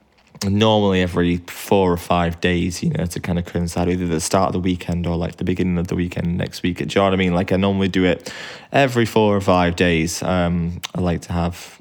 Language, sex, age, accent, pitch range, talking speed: English, male, 20-39, British, 85-100 Hz, 250 wpm